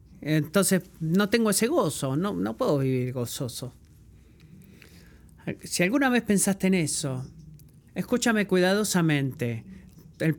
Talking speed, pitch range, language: 110 wpm, 175-225 Hz, Spanish